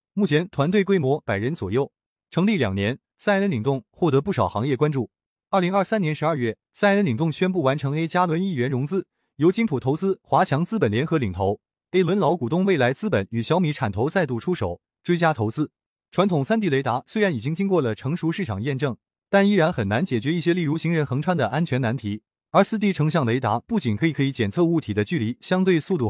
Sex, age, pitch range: male, 20-39, 130-185 Hz